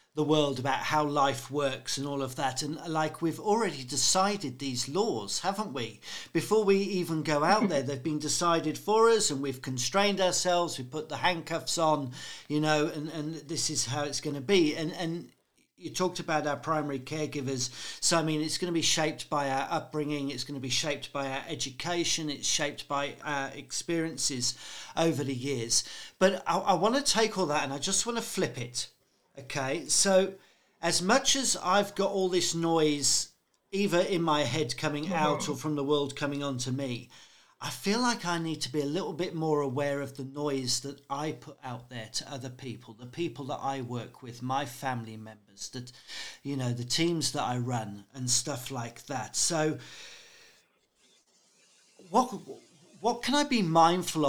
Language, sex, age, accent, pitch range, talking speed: English, male, 50-69, British, 135-170 Hz, 195 wpm